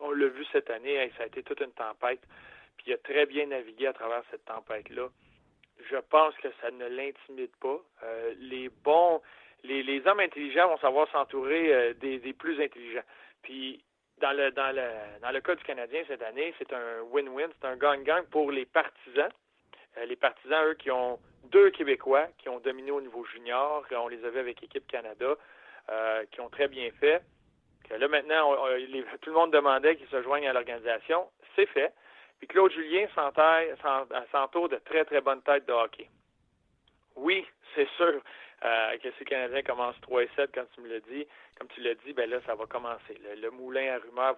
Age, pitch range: 40-59, 125-175 Hz